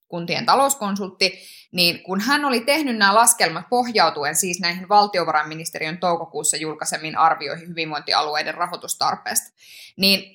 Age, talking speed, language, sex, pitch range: 20-39, 110 wpm, Finnish, female, 180-230 Hz